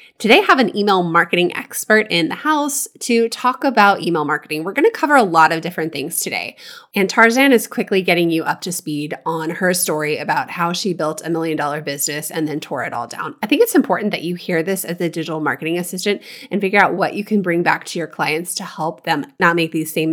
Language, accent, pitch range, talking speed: English, American, 165-220 Hz, 240 wpm